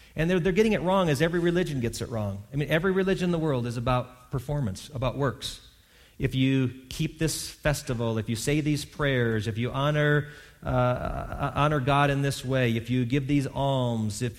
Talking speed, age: 205 wpm, 40-59